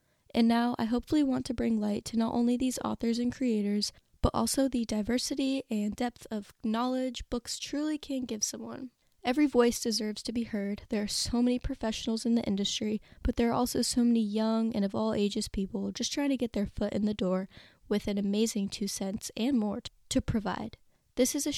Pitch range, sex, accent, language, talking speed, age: 210-245 Hz, female, American, English, 210 wpm, 10-29